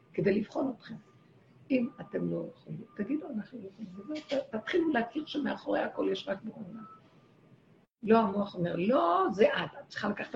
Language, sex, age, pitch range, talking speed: Hebrew, female, 60-79, 185-250 Hz, 155 wpm